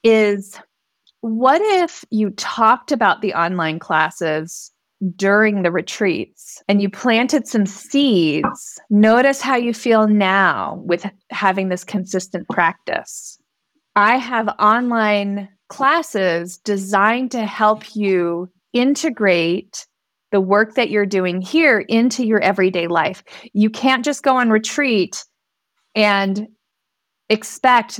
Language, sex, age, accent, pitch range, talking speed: English, female, 30-49, American, 195-230 Hz, 115 wpm